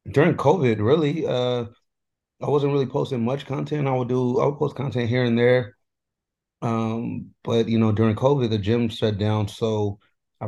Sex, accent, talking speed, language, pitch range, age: male, American, 185 wpm, English, 105-115 Hz, 30-49